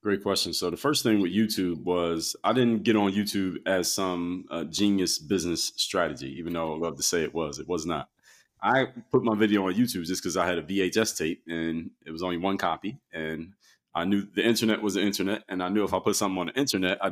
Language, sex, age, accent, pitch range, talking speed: English, male, 30-49, American, 90-110 Hz, 240 wpm